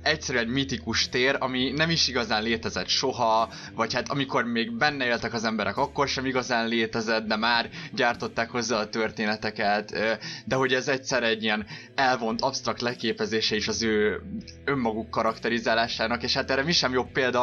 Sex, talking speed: male, 170 wpm